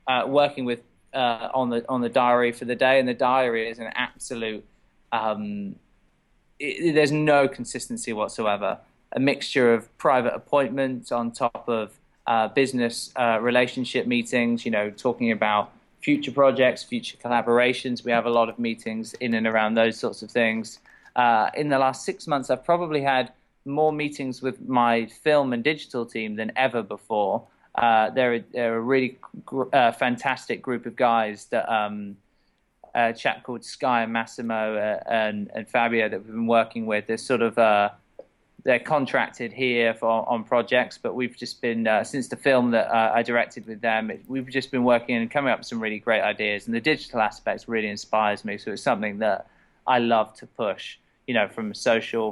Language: English